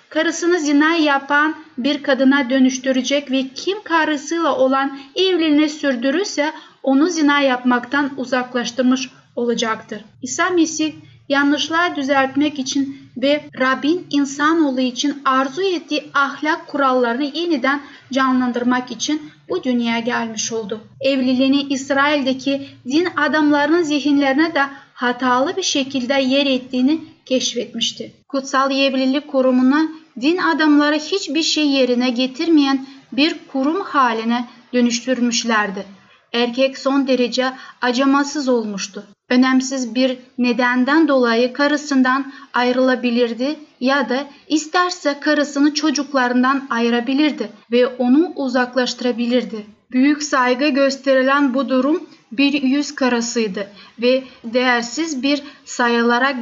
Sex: female